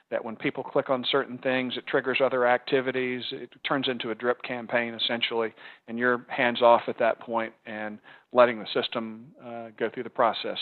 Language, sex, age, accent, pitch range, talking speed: English, male, 40-59, American, 120-140 Hz, 190 wpm